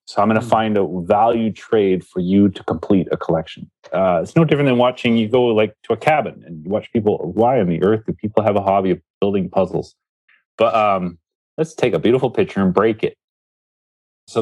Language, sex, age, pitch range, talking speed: English, male, 30-49, 90-115 Hz, 220 wpm